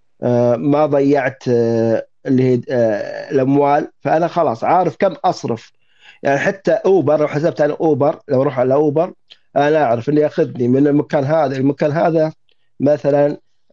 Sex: male